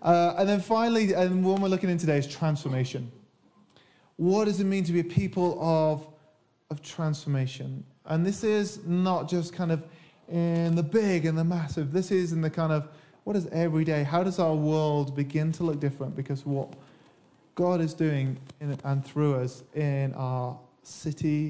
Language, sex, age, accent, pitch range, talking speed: English, male, 20-39, British, 135-165 Hz, 180 wpm